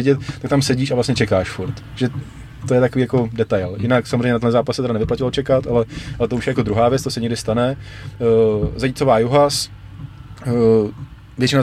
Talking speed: 190 wpm